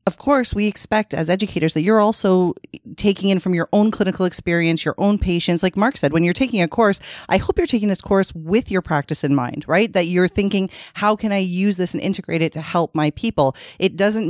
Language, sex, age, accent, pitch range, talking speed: English, female, 30-49, American, 160-195 Hz, 235 wpm